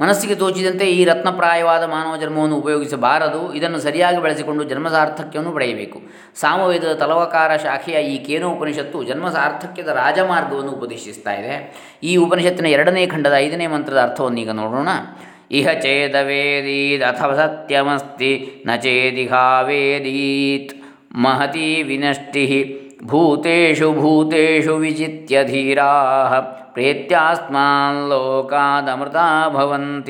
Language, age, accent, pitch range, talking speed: Kannada, 20-39, native, 140-165 Hz, 85 wpm